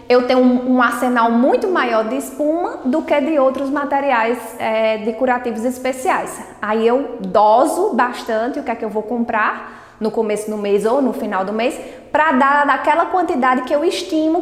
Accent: Brazilian